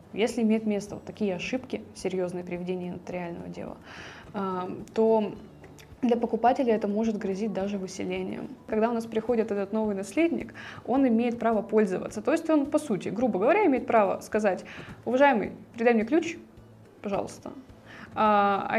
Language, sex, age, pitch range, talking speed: Russian, female, 20-39, 195-250 Hz, 145 wpm